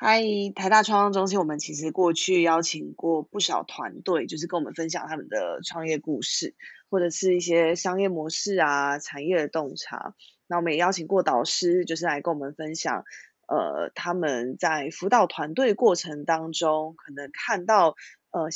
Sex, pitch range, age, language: female, 160-195 Hz, 20-39, Chinese